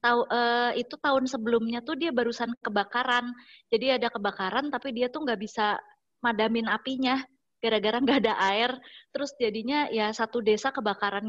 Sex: female